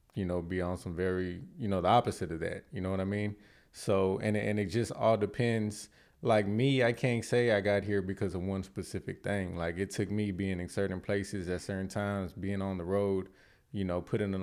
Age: 20-39